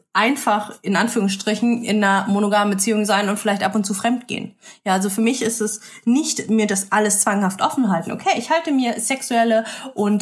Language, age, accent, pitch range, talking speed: German, 20-39, German, 195-230 Hz, 195 wpm